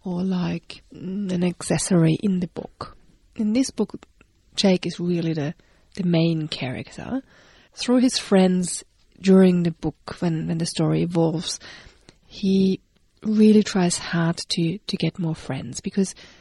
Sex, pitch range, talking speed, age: female, 175-235 Hz, 140 wpm, 30-49